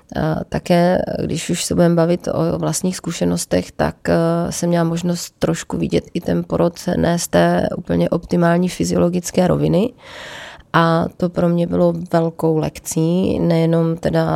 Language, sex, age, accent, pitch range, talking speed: Czech, female, 30-49, native, 155-170 Hz, 140 wpm